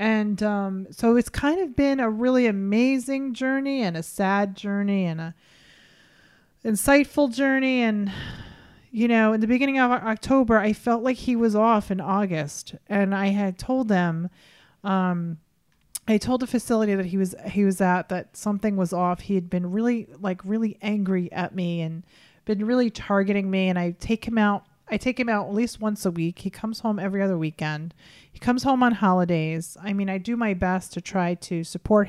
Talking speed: 195 wpm